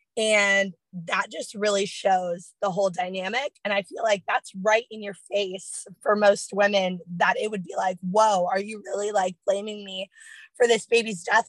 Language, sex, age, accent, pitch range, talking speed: English, female, 20-39, American, 190-220 Hz, 190 wpm